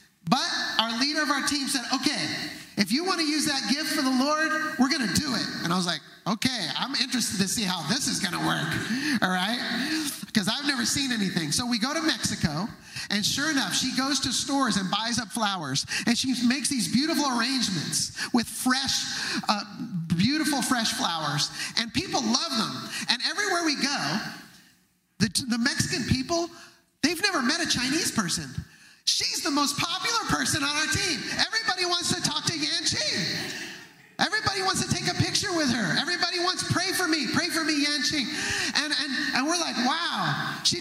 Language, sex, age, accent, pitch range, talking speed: English, male, 30-49, American, 225-300 Hz, 195 wpm